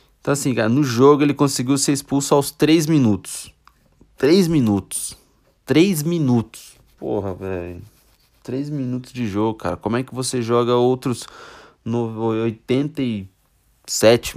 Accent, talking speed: Brazilian, 130 wpm